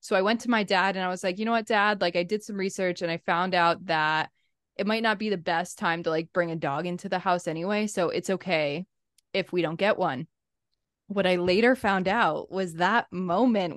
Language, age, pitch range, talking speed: English, 20-39, 175-225 Hz, 245 wpm